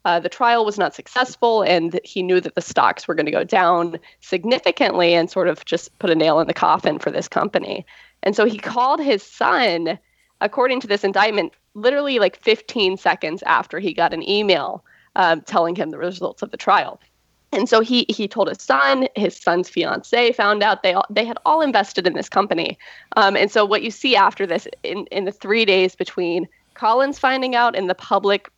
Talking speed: 210 wpm